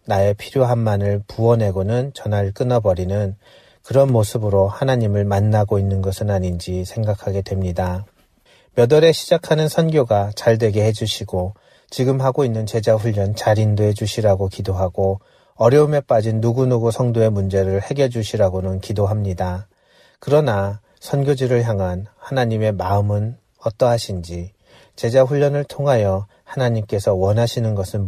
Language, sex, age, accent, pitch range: Korean, male, 40-59, native, 100-120 Hz